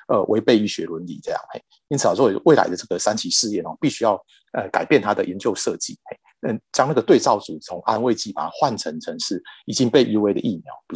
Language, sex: Chinese, male